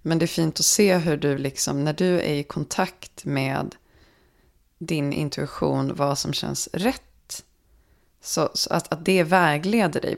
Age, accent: 20-39, native